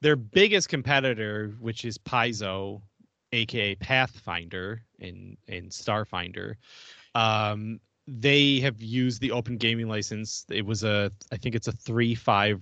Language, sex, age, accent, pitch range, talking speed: English, male, 20-39, American, 105-125 Hz, 135 wpm